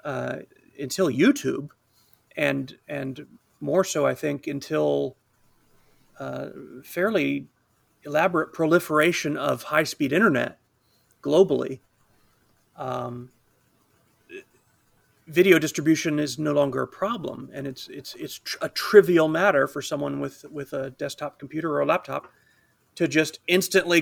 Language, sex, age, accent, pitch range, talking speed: English, male, 40-59, American, 130-170 Hz, 120 wpm